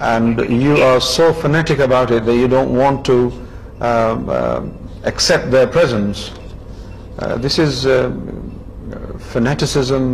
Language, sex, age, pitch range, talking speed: Urdu, male, 50-69, 100-135 Hz, 130 wpm